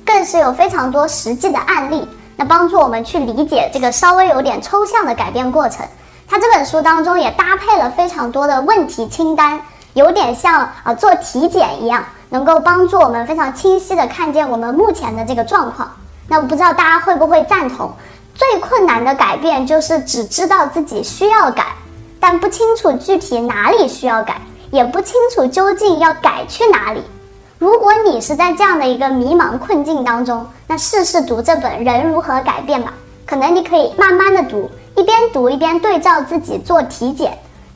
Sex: male